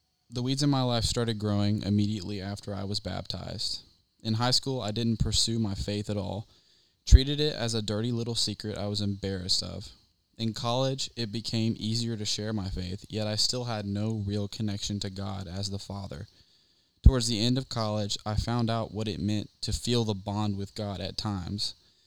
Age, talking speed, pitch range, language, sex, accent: 20-39, 200 wpm, 100-115 Hz, English, male, American